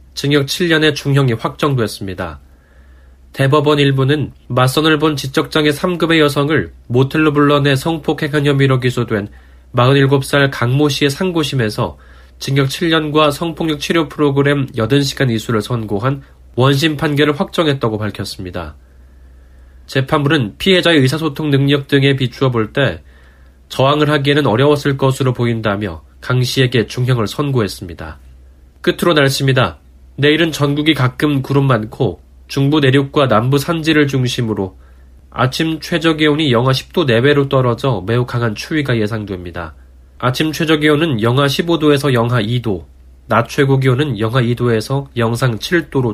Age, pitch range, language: 20-39, 105-150 Hz, Korean